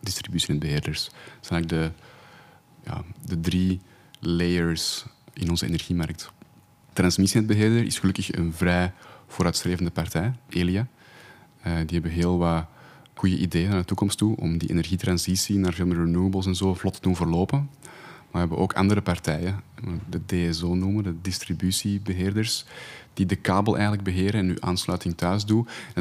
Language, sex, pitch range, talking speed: Dutch, male, 85-100 Hz, 155 wpm